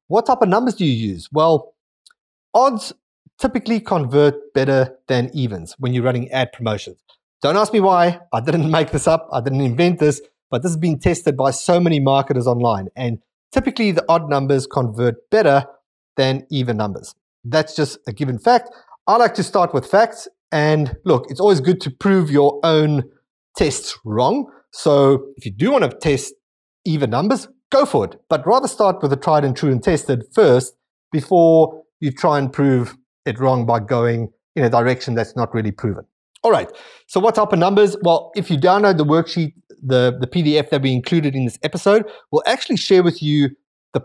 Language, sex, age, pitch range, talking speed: English, male, 30-49, 130-175 Hz, 190 wpm